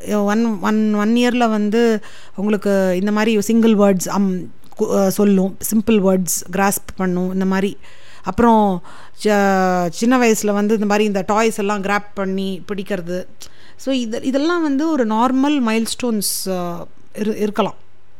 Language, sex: Tamil, female